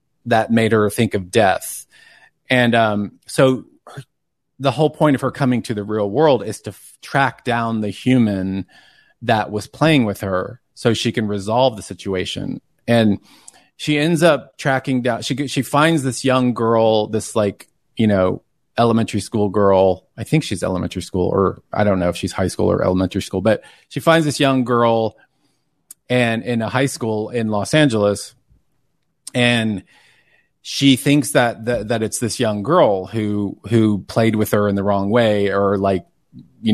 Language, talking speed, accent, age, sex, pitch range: English, 180 wpm, American, 30-49, male, 105-135 Hz